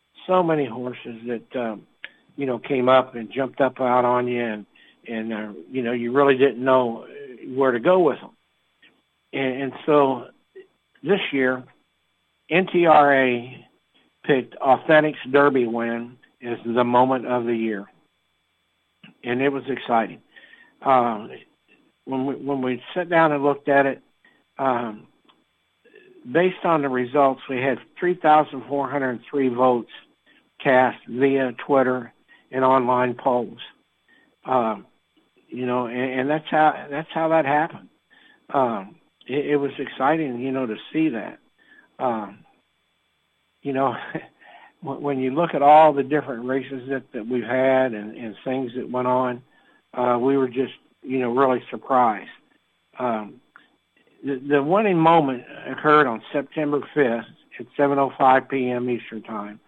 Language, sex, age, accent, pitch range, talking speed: English, male, 60-79, American, 125-145 Hz, 135 wpm